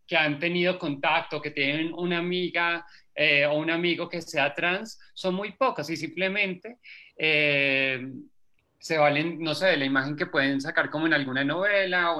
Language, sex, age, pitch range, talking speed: Spanish, male, 30-49, 145-180 Hz, 175 wpm